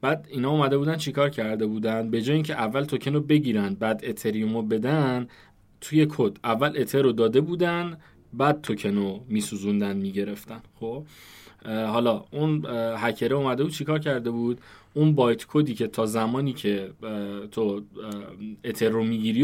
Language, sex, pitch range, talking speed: Persian, male, 110-135 Hz, 155 wpm